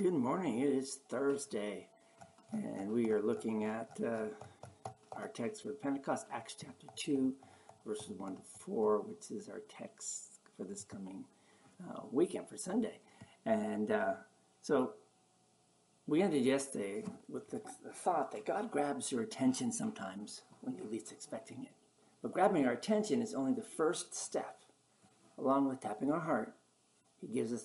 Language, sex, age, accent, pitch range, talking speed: English, male, 60-79, American, 135-215 Hz, 155 wpm